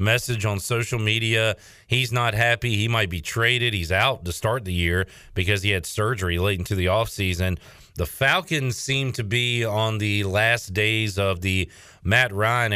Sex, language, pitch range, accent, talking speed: male, English, 100-125 Hz, American, 180 wpm